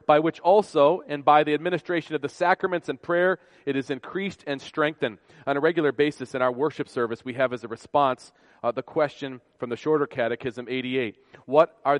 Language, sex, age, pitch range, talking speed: English, male, 40-59, 135-165 Hz, 200 wpm